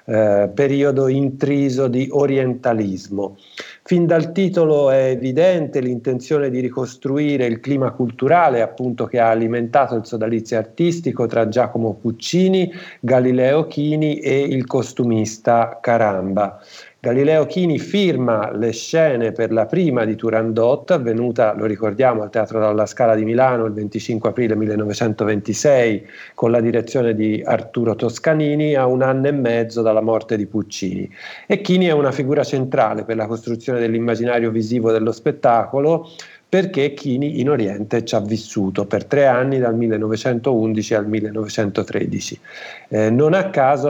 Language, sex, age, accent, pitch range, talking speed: Italian, male, 50-69, native, 115-145 Hz, 140 wpm